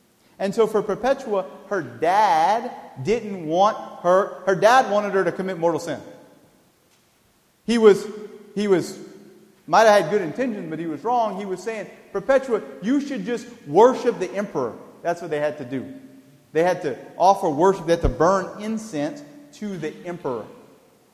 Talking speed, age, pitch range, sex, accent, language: 165 wpm, 40-59, 180-240 Hz, male, American, English